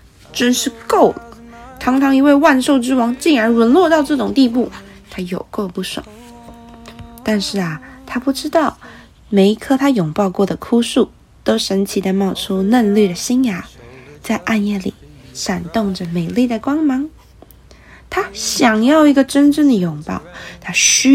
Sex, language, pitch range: female, Chinese, 190-250 Hz